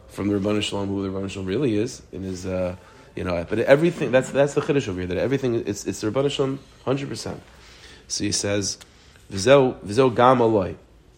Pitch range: 105-140 Hz